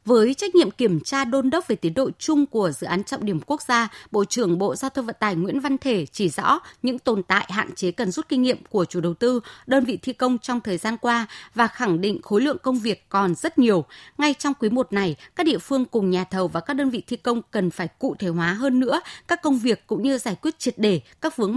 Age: 20-39